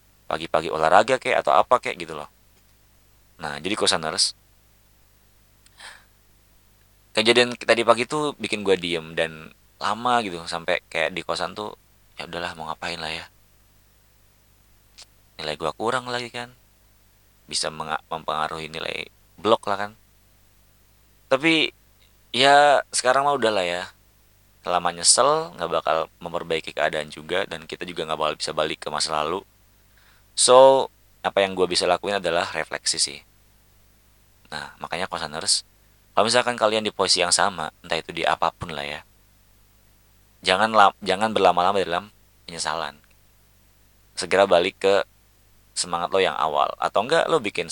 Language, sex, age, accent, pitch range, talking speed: Indonesian, male, 30-49, native, 90-105 Hz, 135 wpm